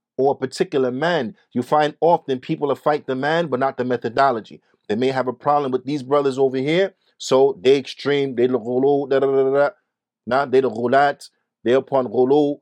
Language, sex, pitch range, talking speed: English, male, 140-200 Hz, 185 wpm